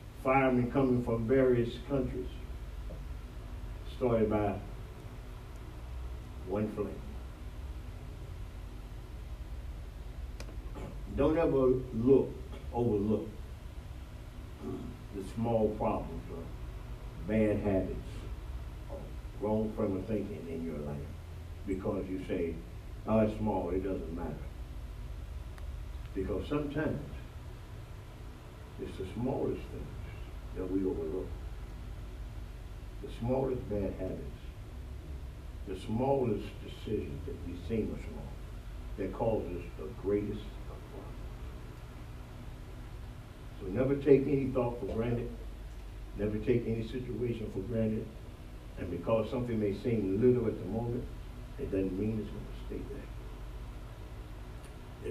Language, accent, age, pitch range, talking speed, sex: English, American, 60-79, 80-115 Hz, 100 wpm, male